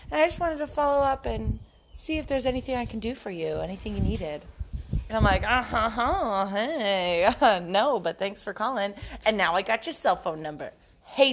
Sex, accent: female, American